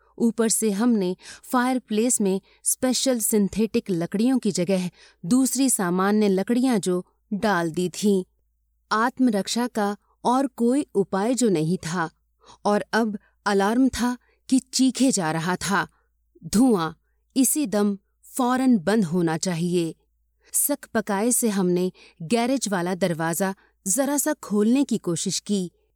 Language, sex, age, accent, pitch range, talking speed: Hindi, female, 30-49, native, 180-240 Hz, 125 wpm